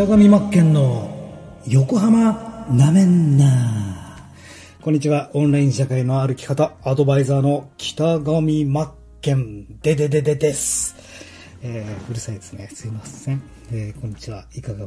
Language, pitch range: Japanese, 105-140 Hz